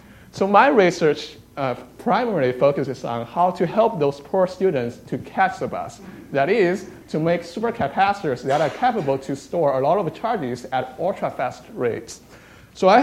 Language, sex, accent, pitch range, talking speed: English, male, American, 135-195 Hz, 165 wpm